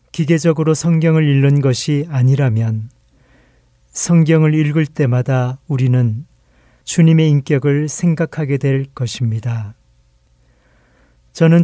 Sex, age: male, 40-59